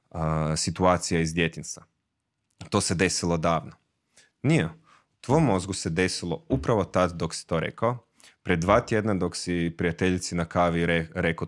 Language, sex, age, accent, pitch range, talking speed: Croatian, male, 30-49, native, 80-100 Hz, 150 wpm